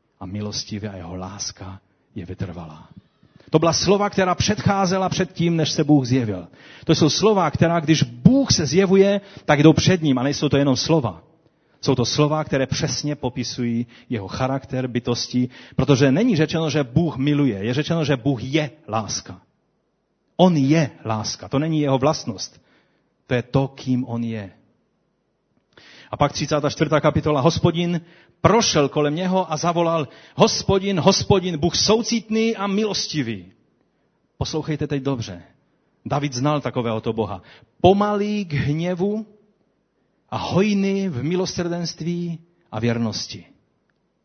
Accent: native